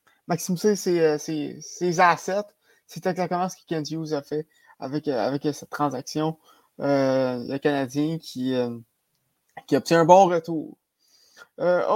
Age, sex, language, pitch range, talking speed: 20-39, male, French, 160-200 Hz, 135 wpm